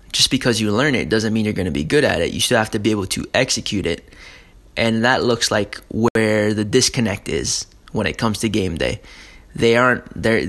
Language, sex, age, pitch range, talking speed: English, male, 20-39, 105-125 Hz, 230 wpm